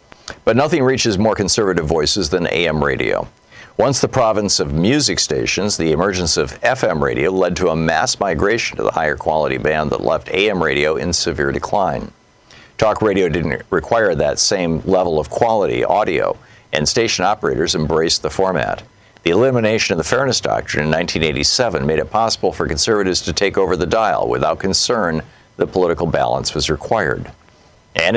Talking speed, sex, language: 170 wpm, male, English